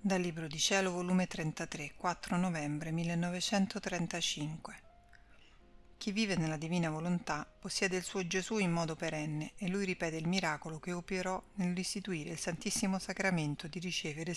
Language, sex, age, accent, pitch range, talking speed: Italian, female, 40-59, native, 155-195 Hz, 145 wpm